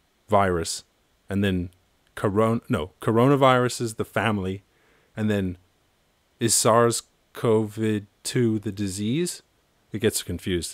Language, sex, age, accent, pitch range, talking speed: English, male, 30-49, American, 90-115 Hz, 110 wpm